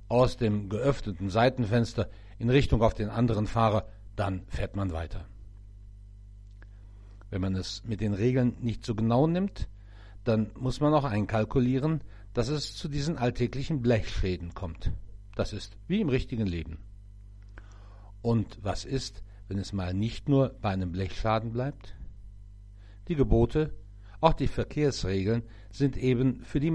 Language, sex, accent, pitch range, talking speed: German, male, German, 100-120 Hz, 140 wpm